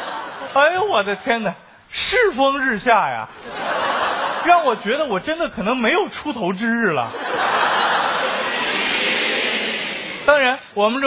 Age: 20-39